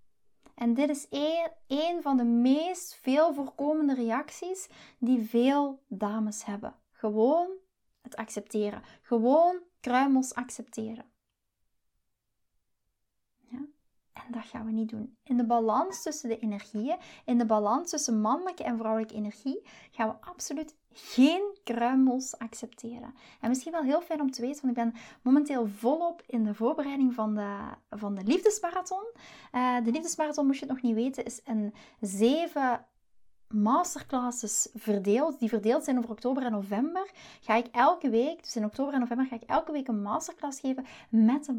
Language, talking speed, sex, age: Dutch, 150 wpm, female, 20-39